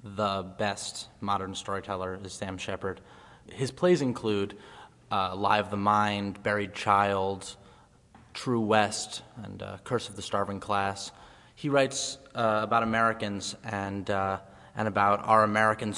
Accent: American